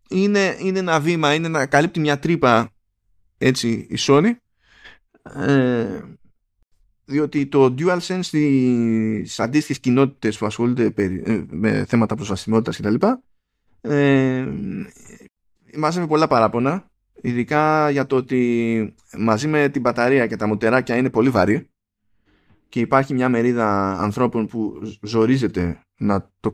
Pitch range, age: 105-150 Hz, 20-39